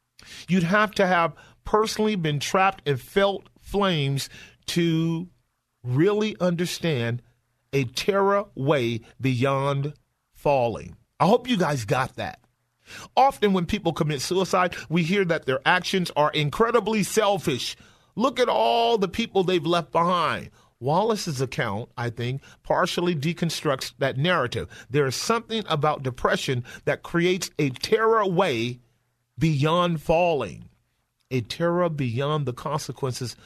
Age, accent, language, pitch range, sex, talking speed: 40-59, American, English, 130-190 Hz, male, 125 wpm